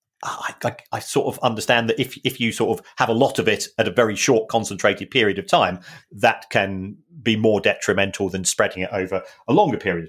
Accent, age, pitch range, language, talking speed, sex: British, 40-59, 100-130 Hz, English, 220 wpm, male